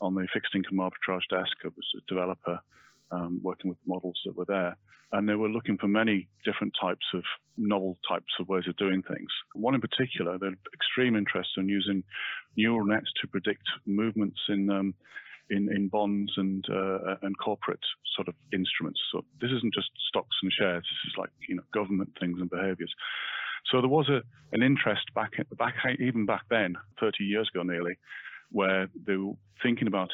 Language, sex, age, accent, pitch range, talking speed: English, male, 40-59, British, 95-105 Hz, 185 wpm